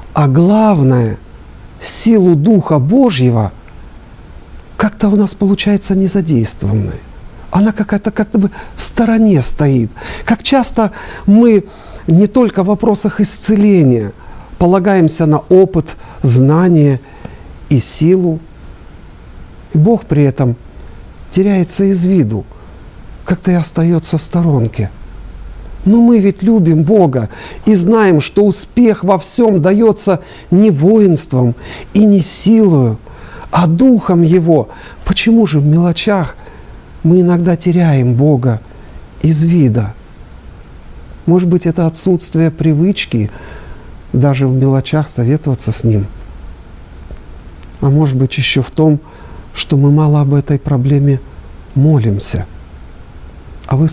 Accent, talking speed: native, 105 wpm